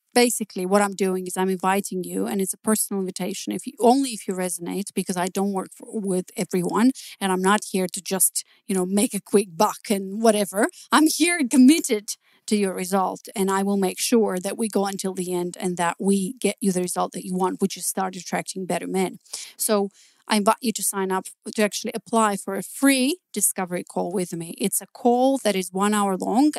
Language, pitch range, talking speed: English, 190-225 Hz, 220 wpm